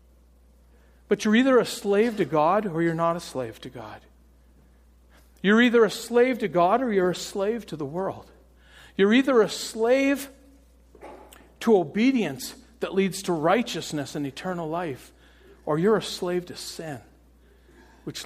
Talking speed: 155 wpm